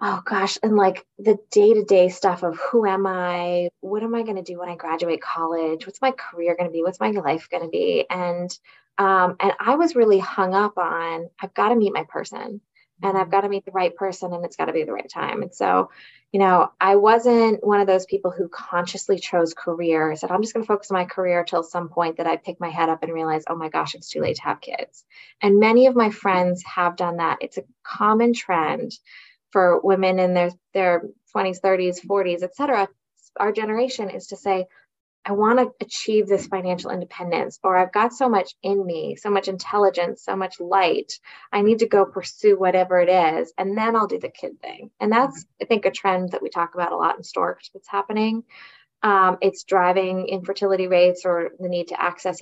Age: 20-39